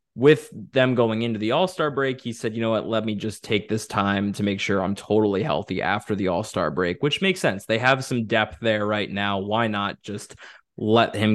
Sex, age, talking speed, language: male, 20-39, 225 wpm, English